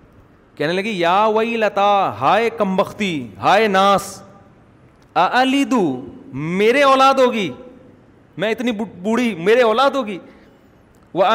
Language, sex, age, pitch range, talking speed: Urdu, male, 40-59, 155-235 Hz, 105 wpm